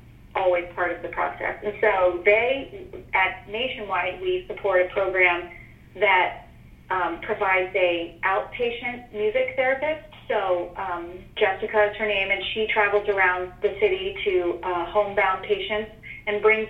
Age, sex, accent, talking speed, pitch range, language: 30-49, female, American, 140 wpm, 185-215 Hz, English